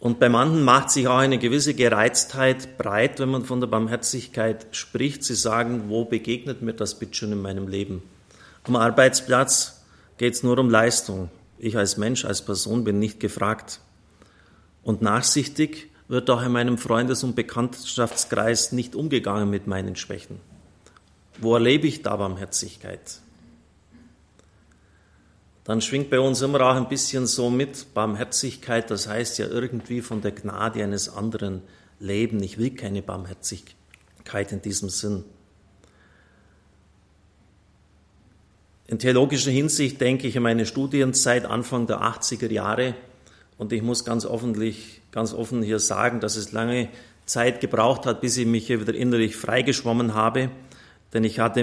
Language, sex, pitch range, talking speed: German, male, 100-125 Hz, 145 wpm